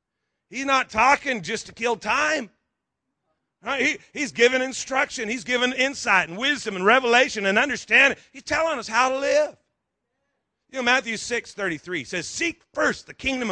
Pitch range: 175-250 Hz